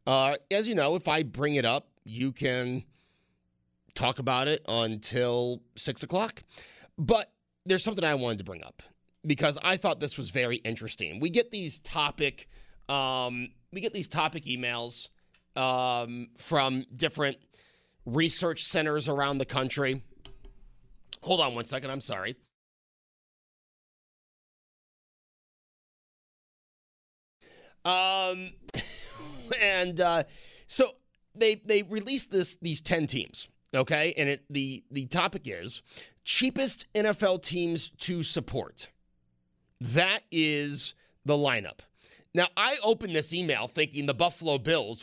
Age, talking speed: 30-49, 125 wpm